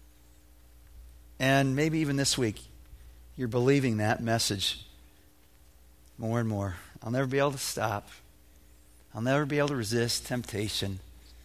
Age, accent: 50-69, American